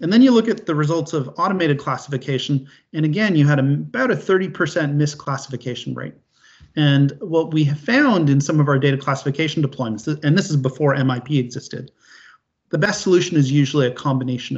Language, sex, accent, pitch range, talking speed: English, male, American, 130-160 Hz, 180 wpm